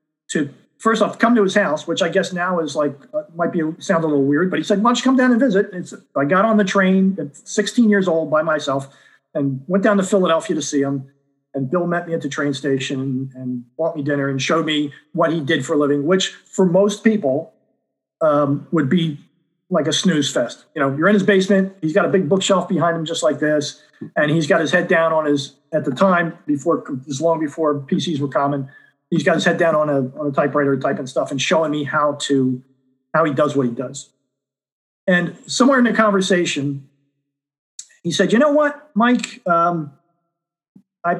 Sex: male